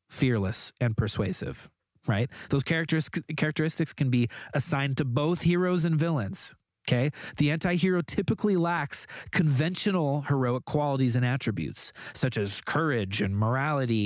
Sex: male